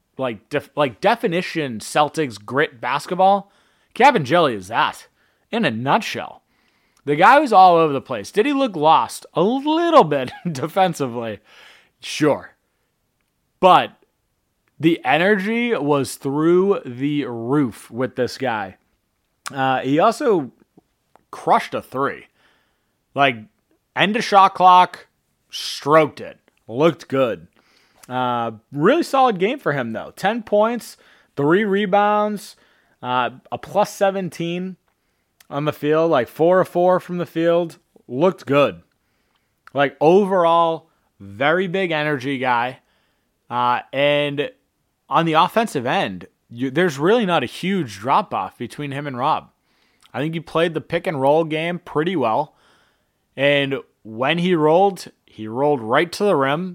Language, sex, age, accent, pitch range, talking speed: English, male, 30-49, American, 130-185 Hz, 130 wpm